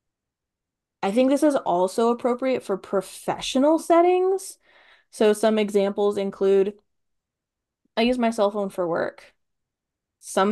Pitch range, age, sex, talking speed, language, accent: 185-240 Hz, 20-39, female, 120 wpm, English, American